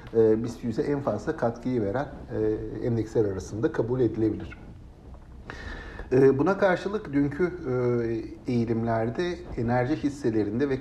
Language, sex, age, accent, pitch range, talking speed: Turkish, male, 60-79, native, 105-135 Hz, 105 wpm